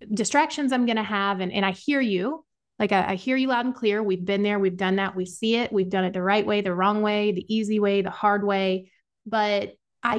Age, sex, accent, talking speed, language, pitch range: 30-49, female, American, 260 wpm, English, 195-225 Hz